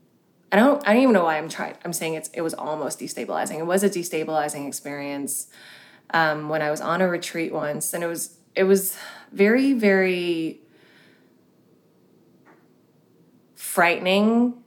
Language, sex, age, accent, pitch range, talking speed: English, female, 20-39, American, 155-190 Hz, 150 wpm